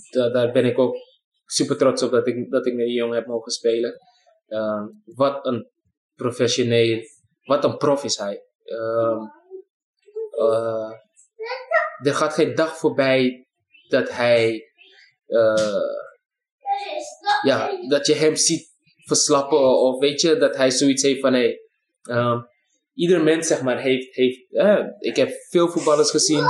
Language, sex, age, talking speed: Dutch, male, 20-39, 145 wpm